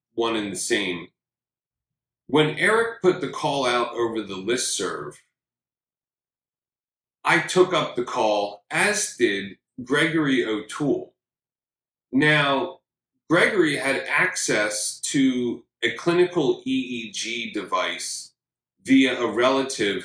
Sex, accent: male, American